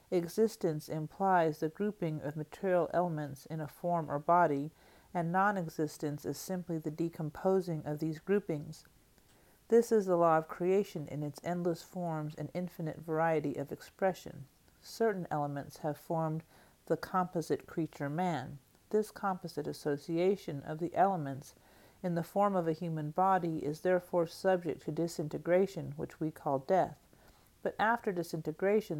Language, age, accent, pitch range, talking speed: English, 50-69, American, 155-185 Hz, 145 wpm